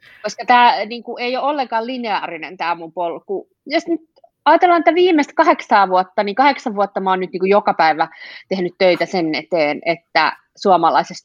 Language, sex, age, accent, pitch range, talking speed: Finnish, female, 30-49, native, 170-230 Hz, 170 wpm